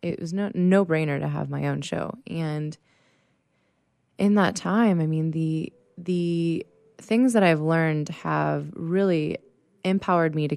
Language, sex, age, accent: English, female, 20-39, American